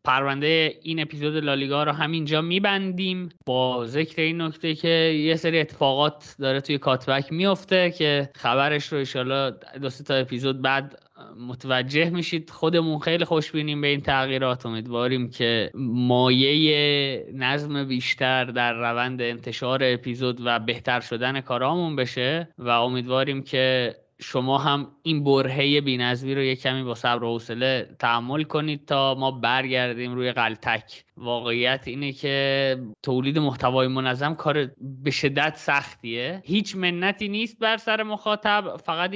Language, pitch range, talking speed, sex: Persian, 125-160 Hz, 135 wpm, male